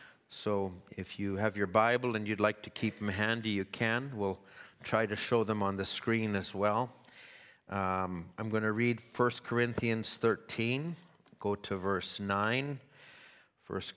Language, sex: English, male